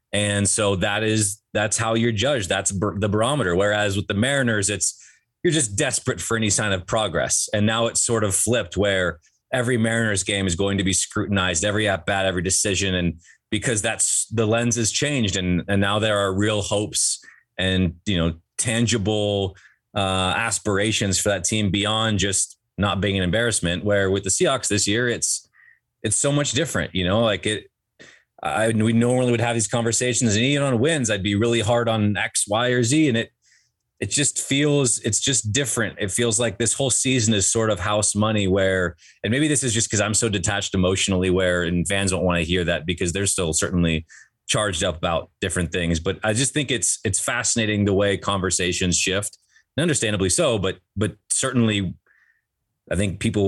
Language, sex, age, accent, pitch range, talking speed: English, male, 30-49, American, 95-115 Hz, 195 wpm